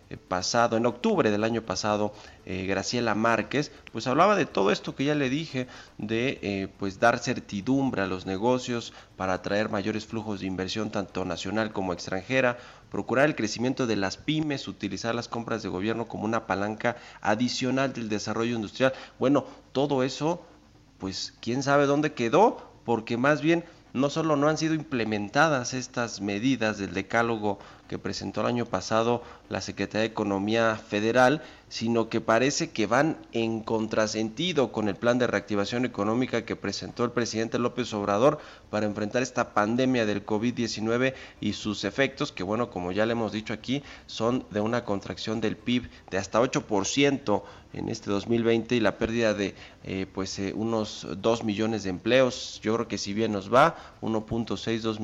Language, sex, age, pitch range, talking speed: Spanish, male, 40-59, 100-125 Hz, 165 wpm